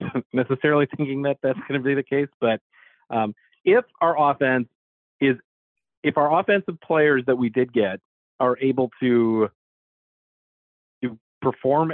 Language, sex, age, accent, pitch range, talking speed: English, male, 40-59, American, 105-135 Hz, 140 wpm